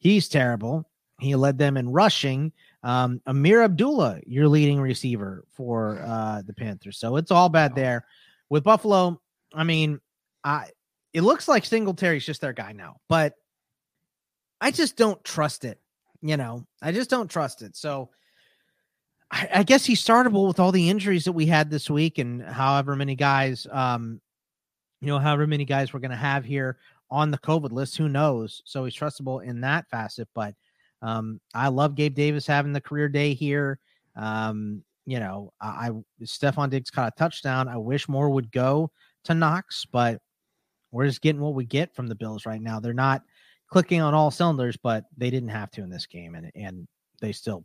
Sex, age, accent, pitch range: male, 30-49, American, 120-155 Hz